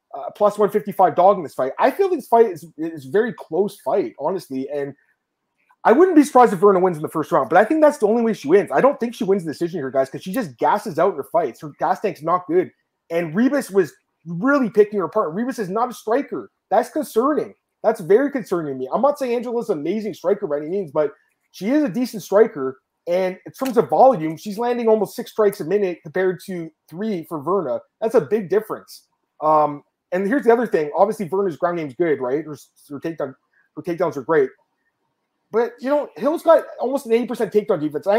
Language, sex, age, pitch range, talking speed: English, male, 30-49, 160-235 Hz, 230 wpm